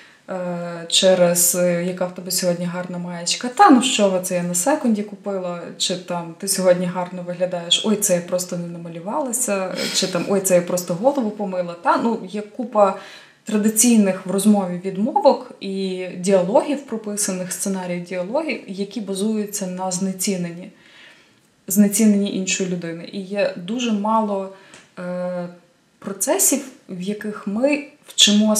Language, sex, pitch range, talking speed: Ukrainian, female, 180-215 Hz, 135 wpm